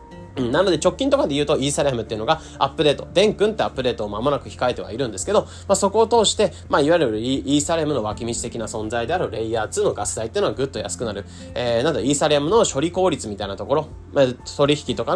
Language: Japanese